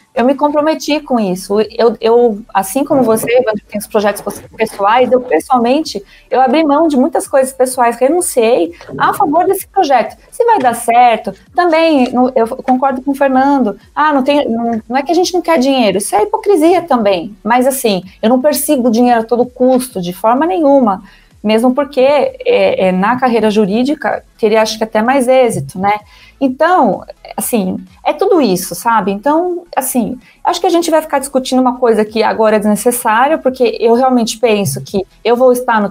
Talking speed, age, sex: 185 wpm, 20-39, female